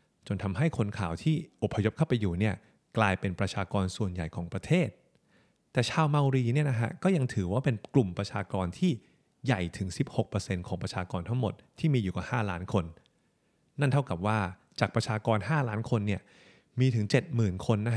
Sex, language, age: male, Thai, 30-49